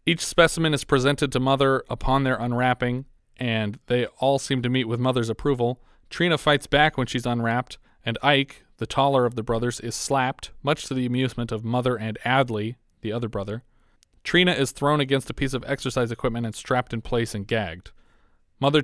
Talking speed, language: 190 wpm, English